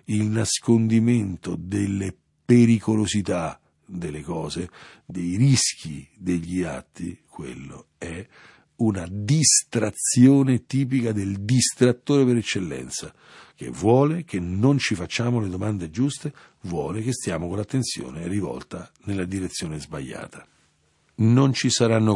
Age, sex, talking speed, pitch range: 50-69, male, 110 wpm, 90-120 Hz